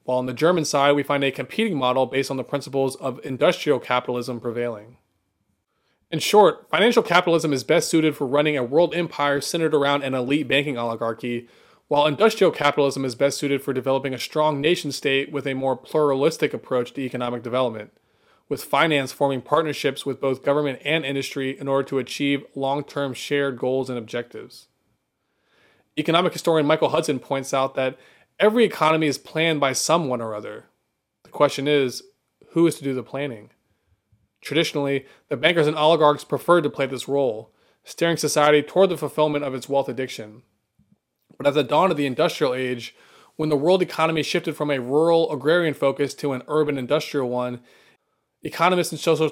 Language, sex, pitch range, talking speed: English, male, 130-155 Hz, 175 wpm